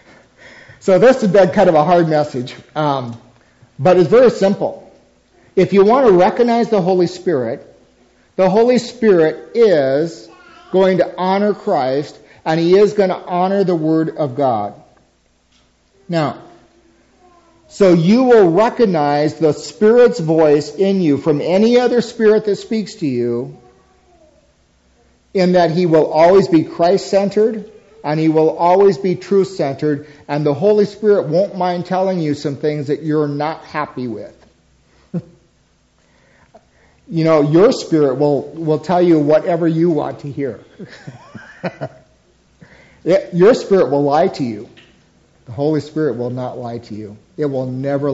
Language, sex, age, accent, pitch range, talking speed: English, male, 50-69, American, 145-195 Hz, 145 wpm